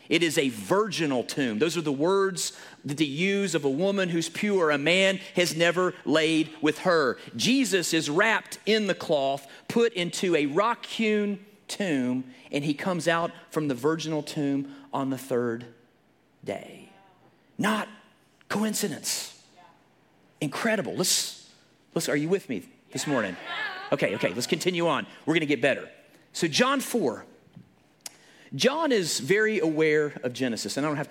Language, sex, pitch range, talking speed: English, male, 125-180 Hz, 150 wpm